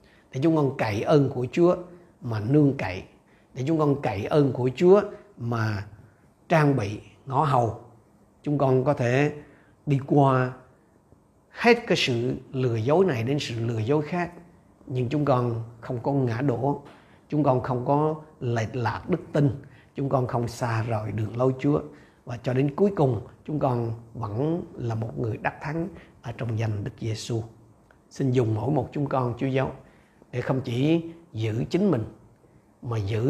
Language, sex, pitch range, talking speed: Vietnamese, male, 115-145 Hz, 175 wpm